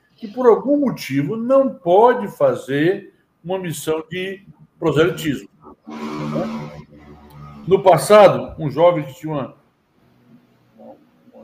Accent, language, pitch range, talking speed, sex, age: Brazilian, Portuguese, 135-175 Hz, 100 wpm, male, 60-79